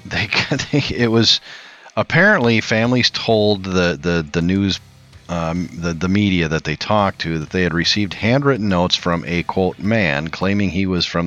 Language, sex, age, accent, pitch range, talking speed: English, male, 40-59, American, 80-110 Hz, 175 wpm